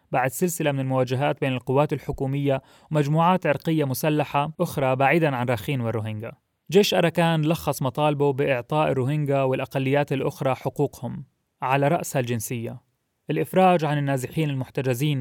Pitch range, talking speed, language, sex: 130-155 Hz, 120 wpm, Arabic, male